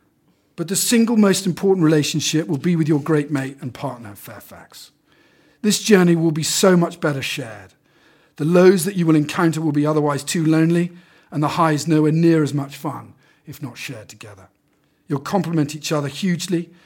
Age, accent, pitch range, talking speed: 50-69, British, 140-170 Hz, 180 wpm